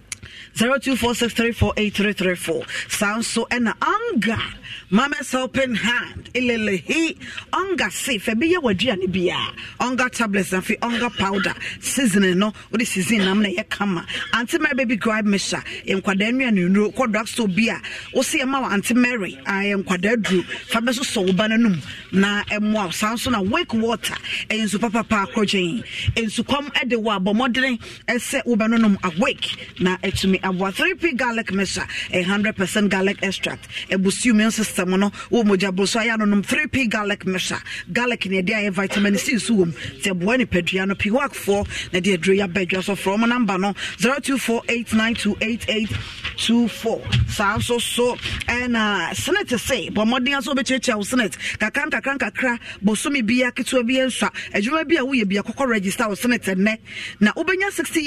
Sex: female